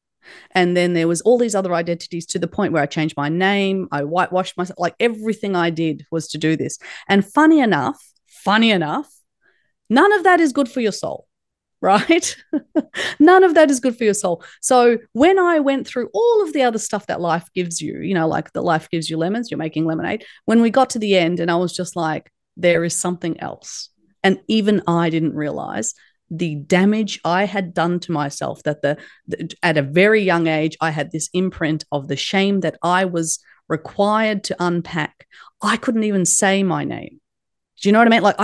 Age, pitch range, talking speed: 30-49, 165-215 Hz, 210 wpm